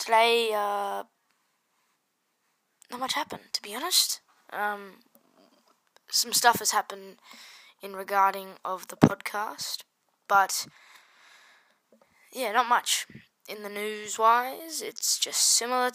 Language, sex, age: English, female, 10-29